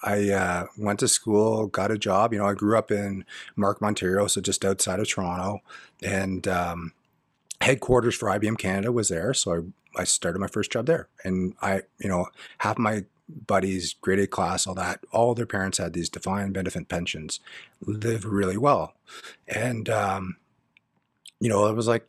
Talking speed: 180 wpm